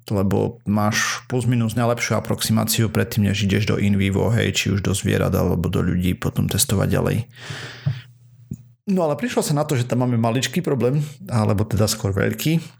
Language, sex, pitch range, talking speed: Slovak, male, 100-120 Hz, 175 wpm